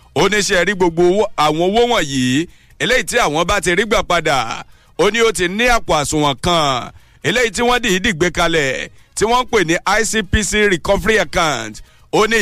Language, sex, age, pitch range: English, male, 60-79, 160-205 Hz